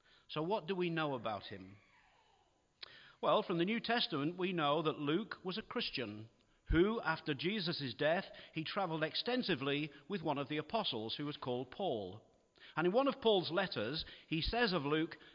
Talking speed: 175 wpm